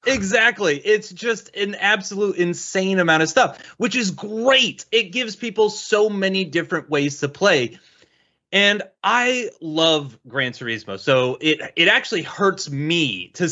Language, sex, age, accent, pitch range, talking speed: English, male, 30-49, American, 125-175 Hz, 145 wpm